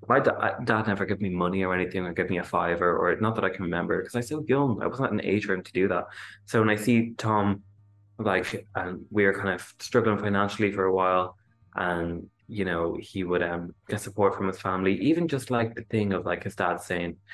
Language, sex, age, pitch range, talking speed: English, male, 20-39, 95-115 Hz, 255 wpm